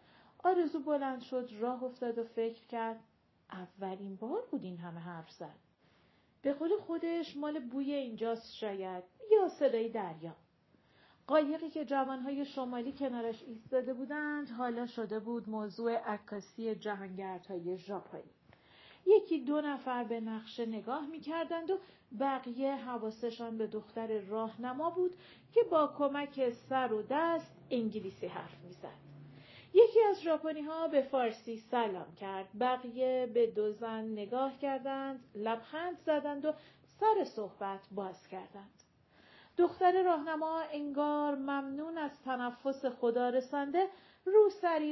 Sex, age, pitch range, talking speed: female, 40-59, 215-295 Hz, 125 wpm